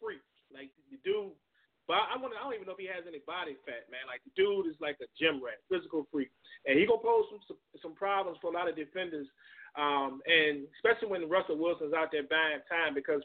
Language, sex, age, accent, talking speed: English, male, 30-49, American, 235 wpm